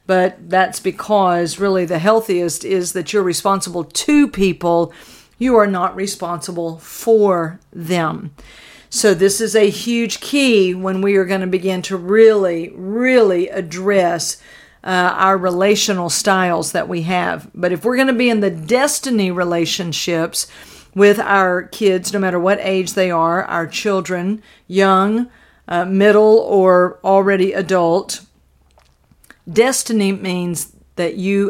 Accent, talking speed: American, 135 wpm